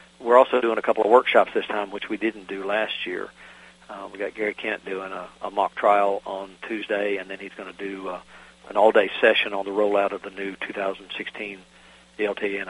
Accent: American